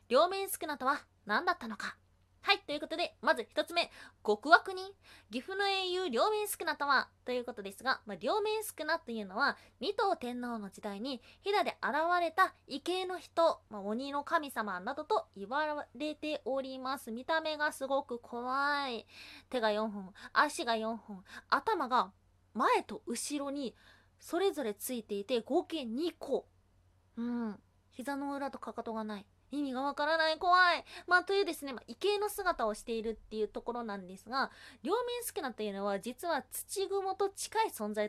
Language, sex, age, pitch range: Japanese, female, 20-39, 220-345 Hz